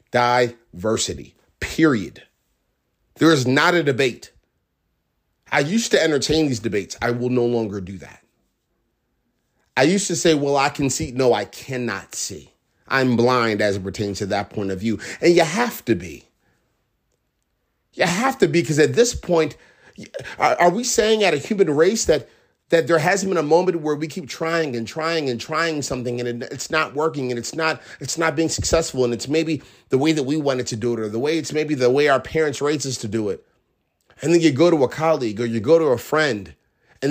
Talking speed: 205 wpm